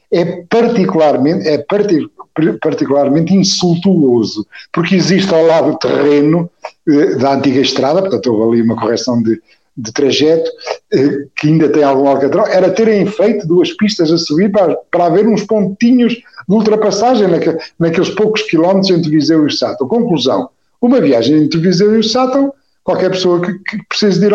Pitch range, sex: 140-215 Hz, male